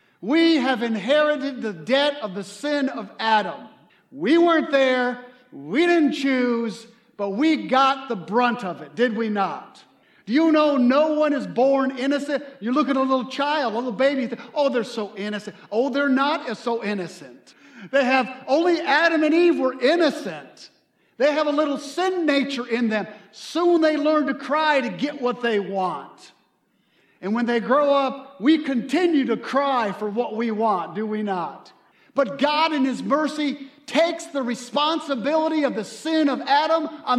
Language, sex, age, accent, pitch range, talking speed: English, male, 50-69, American, 225-295 Hz, 175 wpm